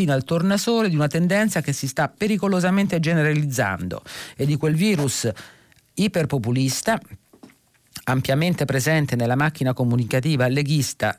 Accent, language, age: native, Italian, 50-69